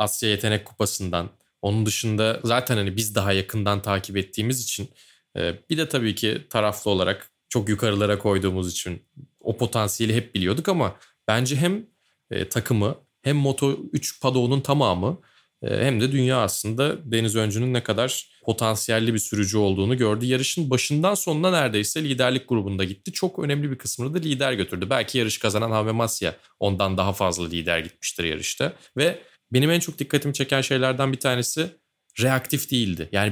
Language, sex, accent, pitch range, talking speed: Turkish, male, native, 105-140 Hz, 155 wpm